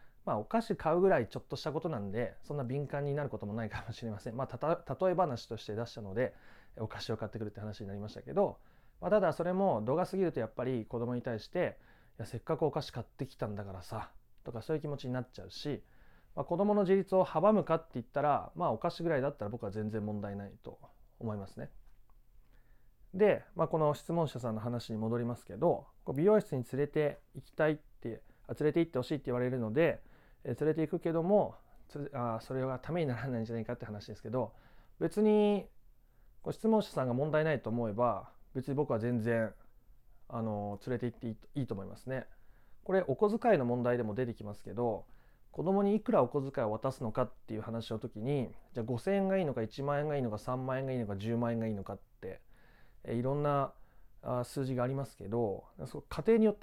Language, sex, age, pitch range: Japanese, male, 30-49, 115-155 Hz